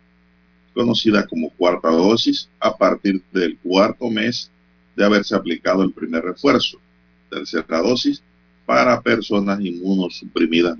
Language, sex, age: Spanish, male, 50-69